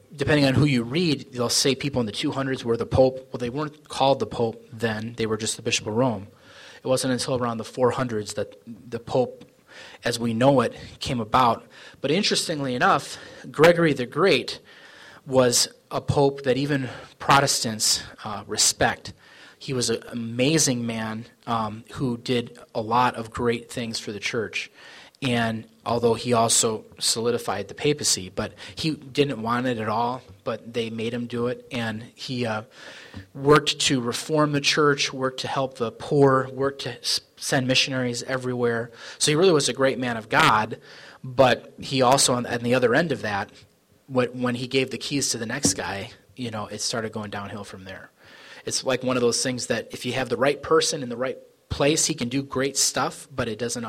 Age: 30-49